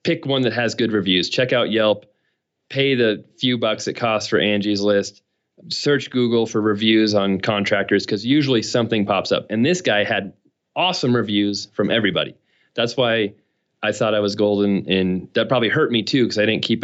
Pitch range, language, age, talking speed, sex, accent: 105-120 Hz, English, 30-49, 190 wpm, male, American